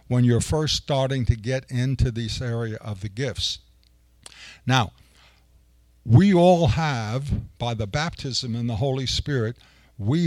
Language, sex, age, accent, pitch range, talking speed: English, male, 60-79, American, 110-145 Hz, 140 wpm